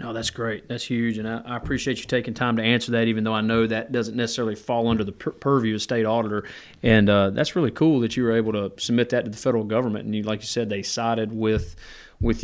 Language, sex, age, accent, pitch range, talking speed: English, male, 40-59, American, 110-125 Hz, 265 wpm